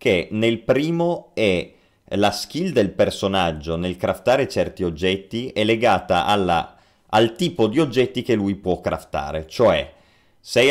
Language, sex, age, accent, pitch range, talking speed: Italian, male, 30-49, native, 85-115 Hz, 140 wpm